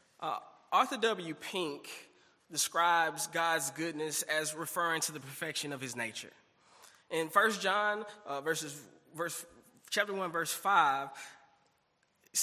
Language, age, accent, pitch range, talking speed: English, 20-39, American, 160-210 Hz, 110 wpm